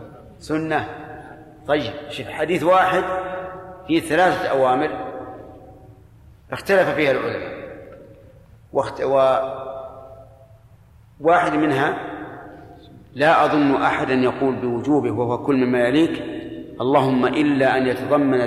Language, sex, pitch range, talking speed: Arabic, male, 120-150 Hz, 90 wpm